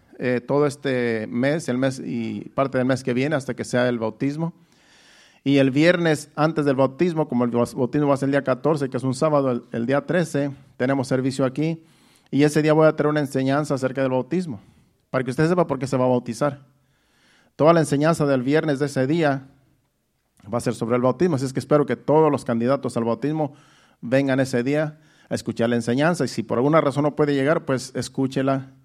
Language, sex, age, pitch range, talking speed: Spanish, male, 50-69, 125-145 Hz, 220 wpm